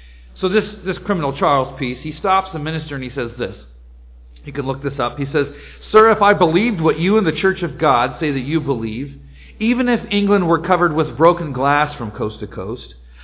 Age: 40-59